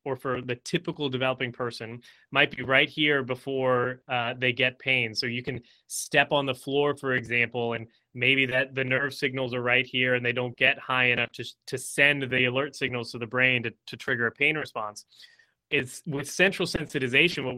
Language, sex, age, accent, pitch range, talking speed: English, male, 20-39, American, 125-145 Hz, 200 wpm